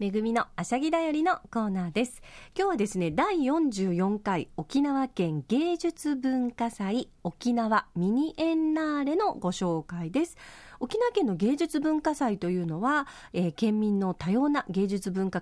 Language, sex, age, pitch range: Japanese, female, 40-59, 180-290 Hz